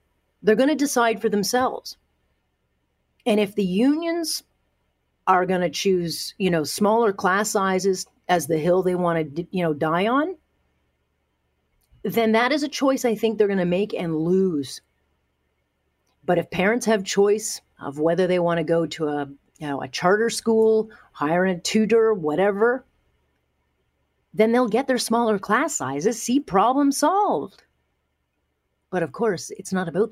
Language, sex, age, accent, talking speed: English, female, 40-59, American, 150 wpm